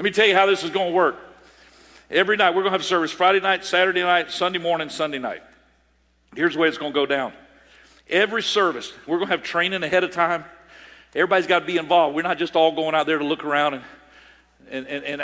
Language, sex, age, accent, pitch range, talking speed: English, male, 50-69, American, 155-195 Hz, 240 wpm